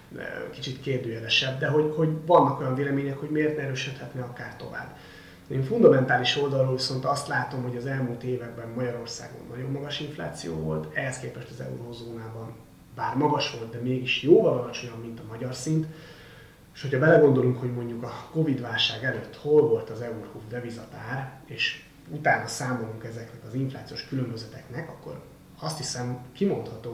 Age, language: 30-49, Hungarian